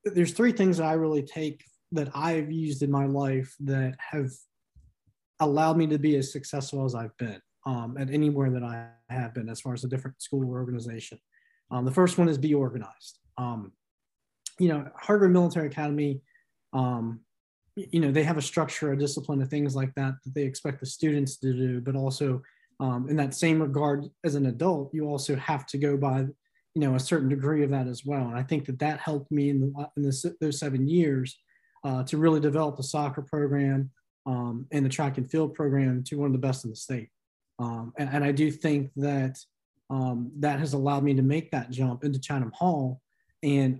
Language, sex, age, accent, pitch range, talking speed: English, male, 20-39, American, 130-155 Hz, 210 wpm